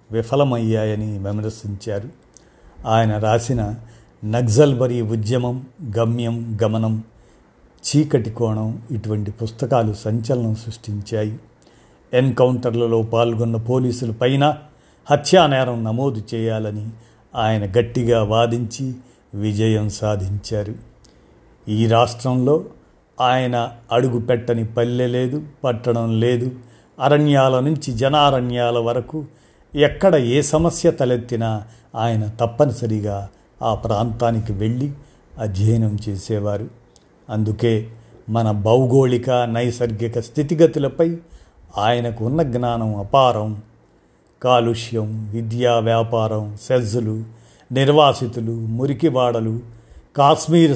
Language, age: Telugu, 50-69